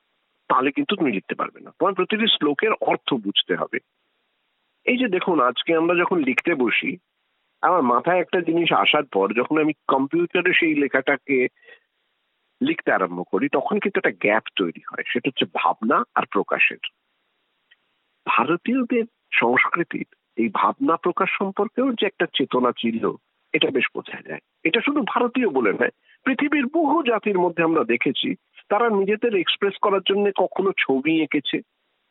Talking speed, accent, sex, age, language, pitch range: 80 wpm, native, male, 50-69, Bengali, 145-225 Hz